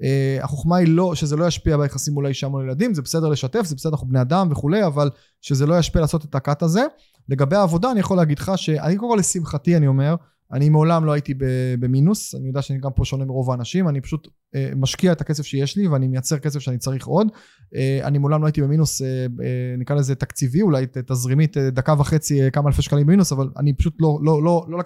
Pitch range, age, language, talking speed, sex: 140-185 Hz, 20-39, Hebrew, 225 wpm, male